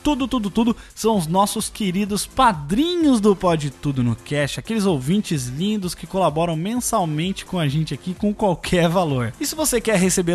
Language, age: Portuguese, 20-39